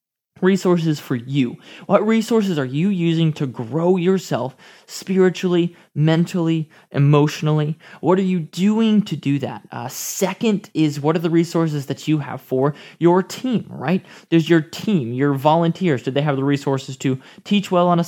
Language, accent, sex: English, American, male